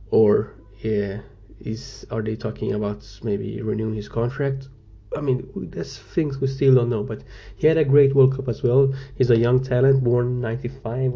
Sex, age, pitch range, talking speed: male, 20-39, 105-125 Hz, 185 wpm